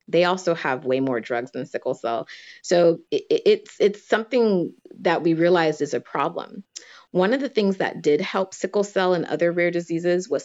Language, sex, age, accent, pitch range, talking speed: English, female, 30-49, American, 150-185 Hz, 195 wpm